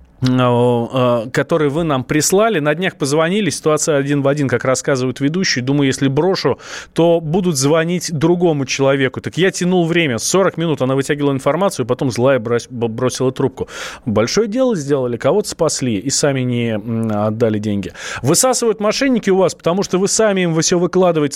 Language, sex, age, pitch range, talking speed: Russian, male, 20-39, 130-170 Hz, 155 wpm